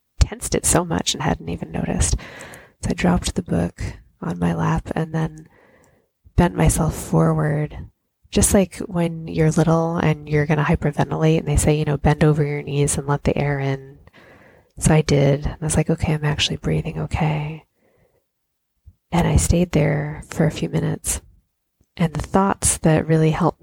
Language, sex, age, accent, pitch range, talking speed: English, female, 20-39, American, 145-160 Hz, 180 wpm